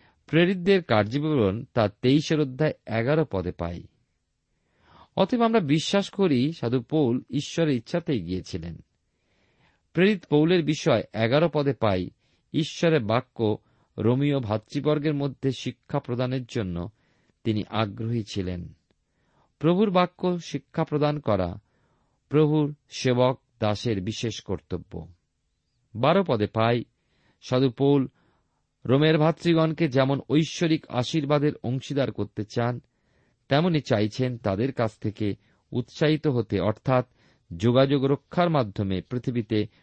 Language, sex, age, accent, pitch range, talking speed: Bengali, male, 50-69, native, 110-150 Hz, 95 wpm